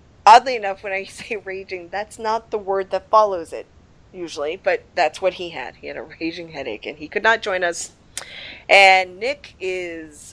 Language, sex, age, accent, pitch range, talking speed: English, female, 30-49, American, 170-235 Hz, 190 wpm